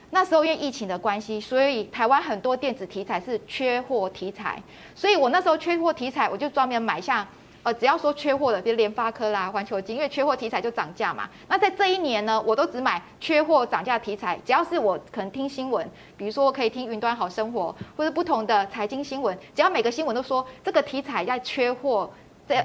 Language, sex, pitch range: Chinese, female, 215-280 Hz